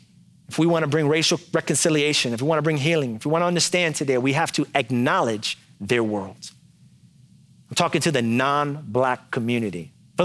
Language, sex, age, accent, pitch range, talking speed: English, male, 30-49, American, 120-155 Hz, 185 wpm